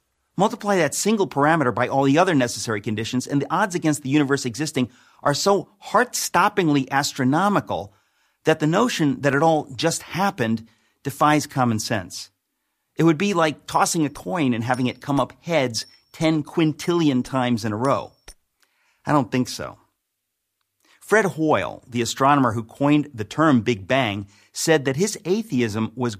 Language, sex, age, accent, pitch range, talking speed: English, male, 50-69, American, 120-160 Hz, 165 wpm